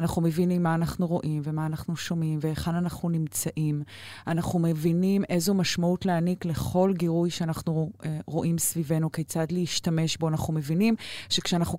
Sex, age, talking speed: female, 30-49, 135 wpm